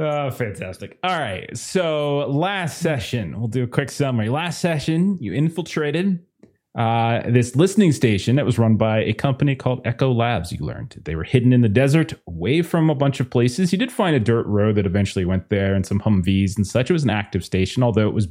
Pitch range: 105-140 Hz